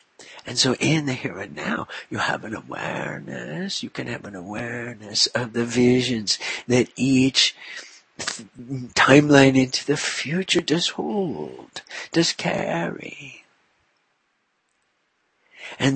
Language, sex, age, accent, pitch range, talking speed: English, male, 60-79, American, 130-165 Hz, 115 wpm